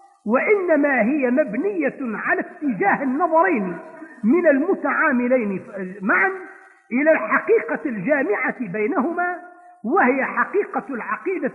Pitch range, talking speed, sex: 260-355 Hz, 85 wpm, male